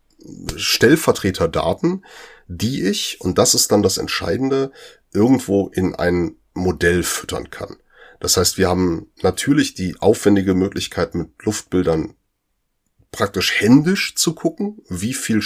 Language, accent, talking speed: German, German, 120 wpm